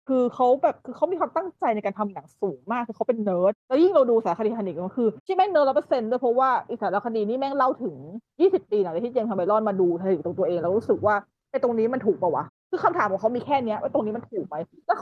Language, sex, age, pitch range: Thai, female, 20-39, 200-280 Hz